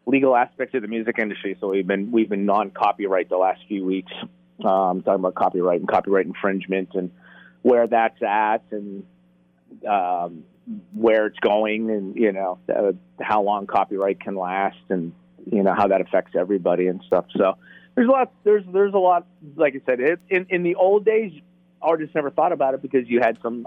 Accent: American